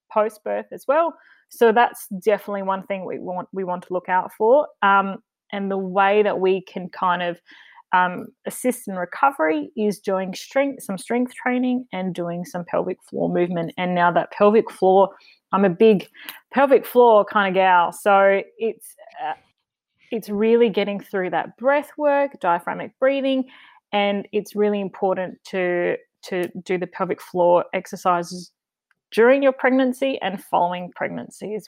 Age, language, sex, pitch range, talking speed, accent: 30-49, English, female, 180-220 Hz, 160 wpm, Australian